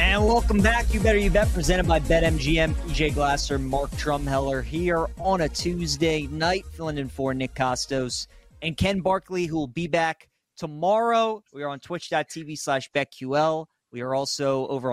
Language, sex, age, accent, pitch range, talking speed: English, male, 30-49, American, 135-175 Hz, 170 wpm